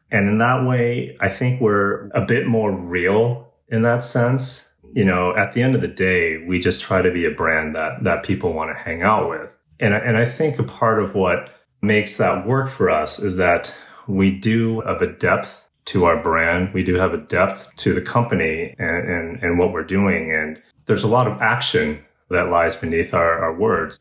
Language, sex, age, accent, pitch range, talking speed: English, male, 30-49, American, 85-115 Hz, 210 wpm